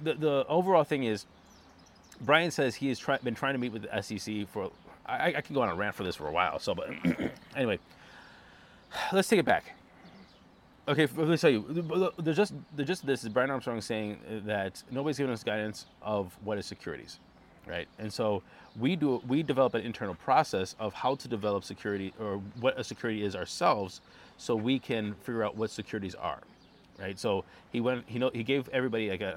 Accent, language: American, English